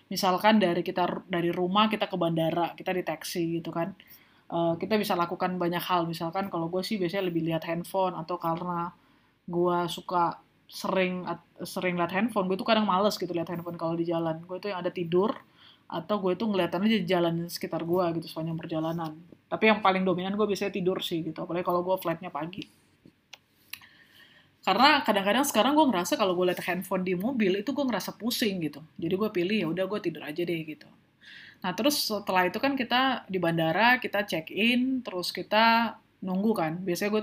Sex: female